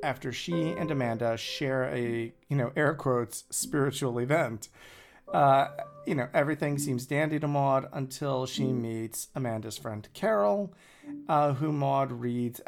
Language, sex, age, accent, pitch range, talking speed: English, male, 40-59, American, 125-165 Hz, 140 wpm